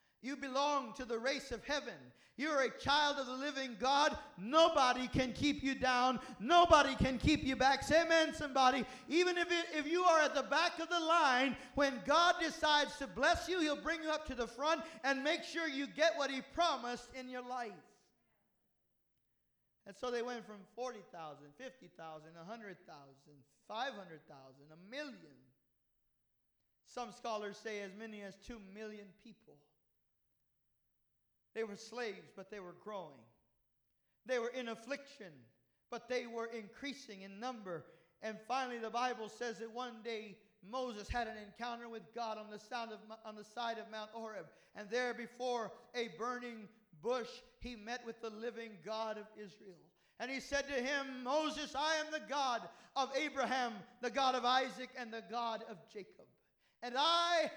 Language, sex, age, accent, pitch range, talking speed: English, male, 50-69, American, 210-275 Hz, 165 wpm